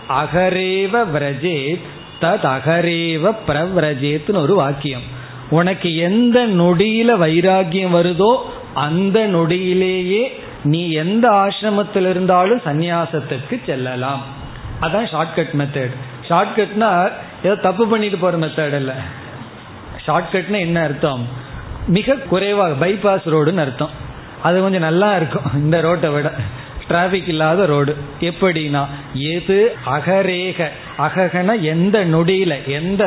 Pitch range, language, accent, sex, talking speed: 145-190 Hz, Tamil, native, male, 95 wpm